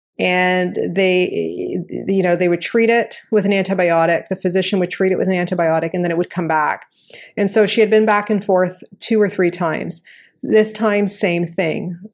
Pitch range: 175-205 Hz